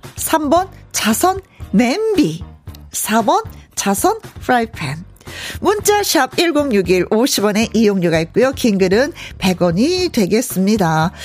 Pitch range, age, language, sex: 200-315 Hz, 40-59, Korean, female